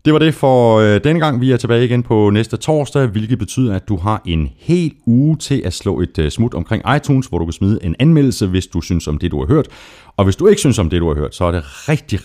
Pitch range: 85-130 Hz